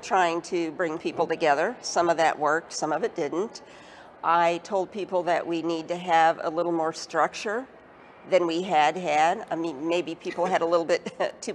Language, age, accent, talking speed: English, 50-69, American, 195 wpm